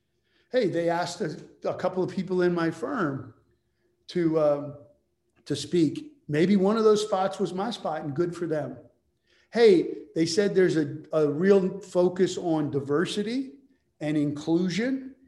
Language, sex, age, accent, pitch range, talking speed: English, male, 50-69, American, 155-195 Hz, 155 wpm